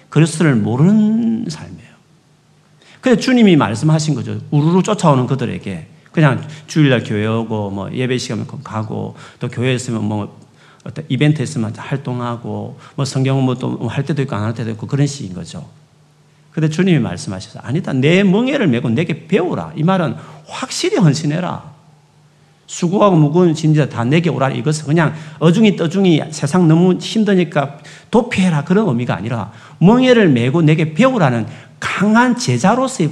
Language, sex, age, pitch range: Korean, male, 40-59, 130-185 Hz